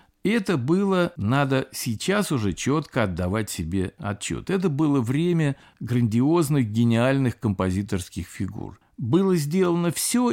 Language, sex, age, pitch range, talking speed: Russian, male, 50-69, 115-165 Hz, 110 wpm